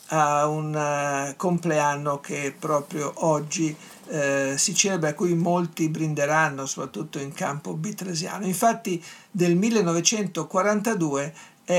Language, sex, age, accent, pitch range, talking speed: Italian, male, 50-69, native, 150-180 Hz, 100 wpm